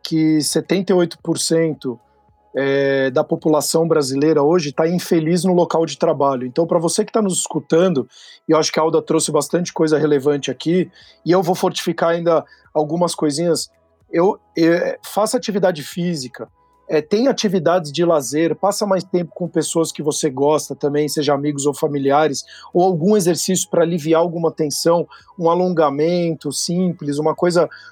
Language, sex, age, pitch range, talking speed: Portuguese, male, 40-59, 150-175 Hz, 155 wpm